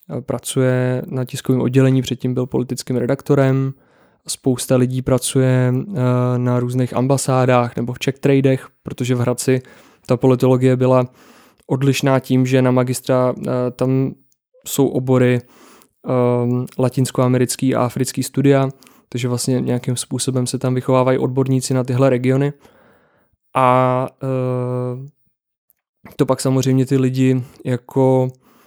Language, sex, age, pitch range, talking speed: Czech, male, 20-39, 125-135 Hz, 115 wpm